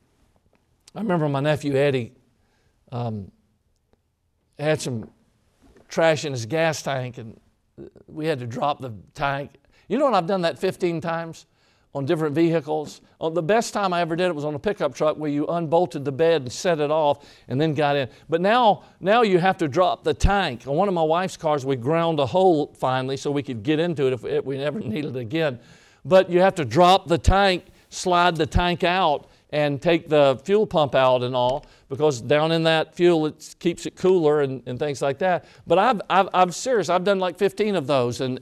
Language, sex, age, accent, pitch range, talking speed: English, male, 50-69, American, 140-180 Hz, 210 wpm